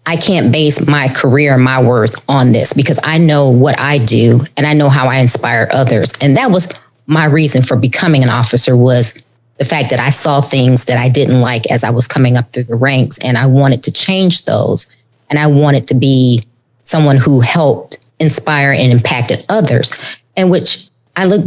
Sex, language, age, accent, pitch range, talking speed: female, English, 20-39, American, 130-165 Hz, 200 wpm